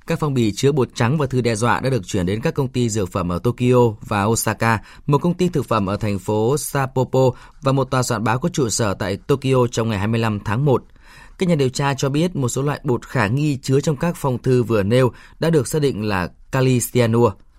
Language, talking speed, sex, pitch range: Vietnamese, 245 wpm, male, 115-145 Hz